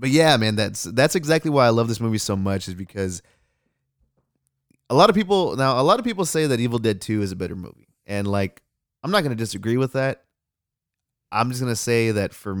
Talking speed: 235 wpm